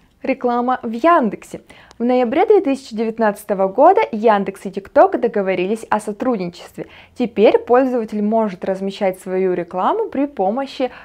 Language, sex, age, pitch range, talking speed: Russian, female, 20-39, 195-255 Hz, 115 wpm